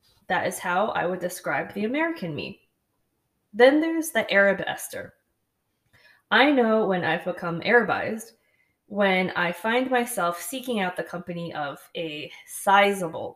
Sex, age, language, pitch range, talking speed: female, 20-39, Arabic, 175-225 Hz, 140 wpm